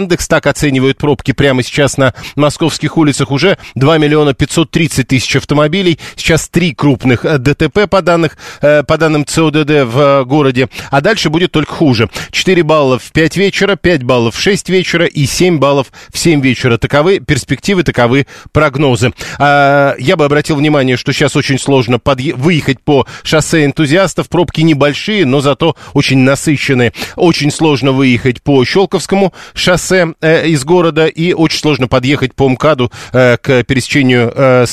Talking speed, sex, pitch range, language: 150 wpm, male, 130-160 Hz, Russian